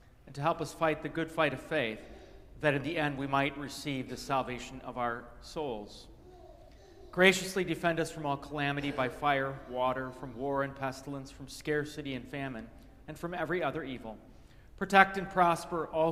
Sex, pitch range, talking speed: male, 130-160 Hz, 180 wpm